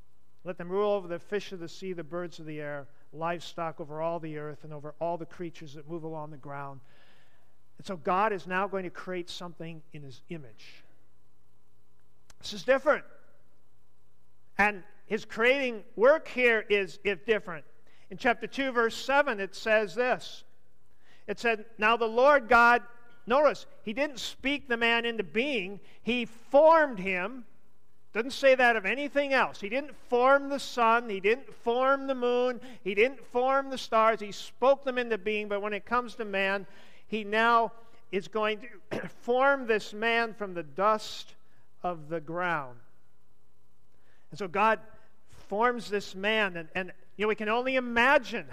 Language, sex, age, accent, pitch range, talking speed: English, male, 50-69, American, 170-235 Hz, 170 wpm